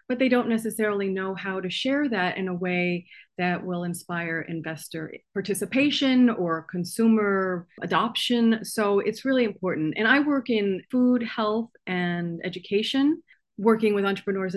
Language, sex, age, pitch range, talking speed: English, female, 30-49, 185-230 Hz, 145 wpm